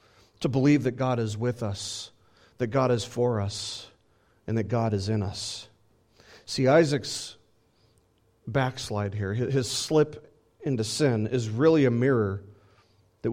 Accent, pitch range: American, 110-165 Hz